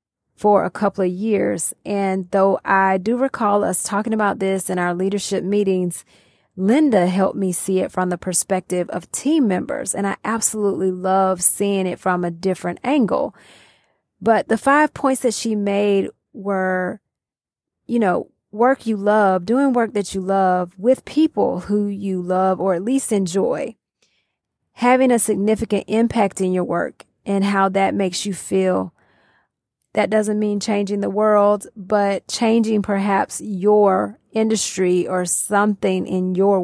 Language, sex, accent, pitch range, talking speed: English, female, American, 185-215 Hz, 155 wpm